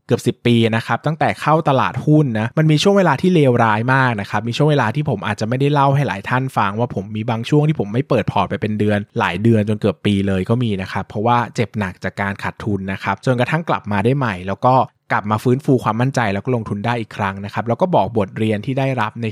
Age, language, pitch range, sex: 20-39, Thai, 110-140 Hz, male